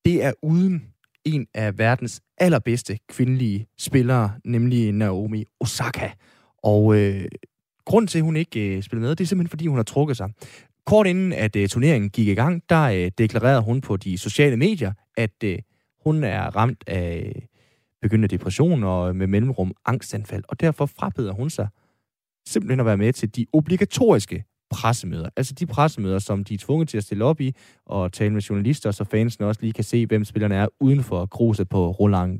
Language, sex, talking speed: Danish, male, 190 wpm